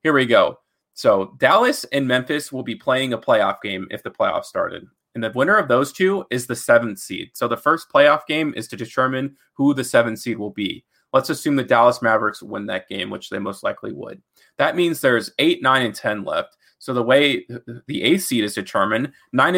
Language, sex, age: English, male, 20-39